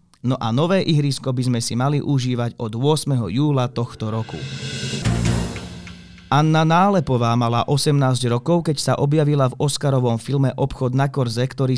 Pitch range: 120-150 Hz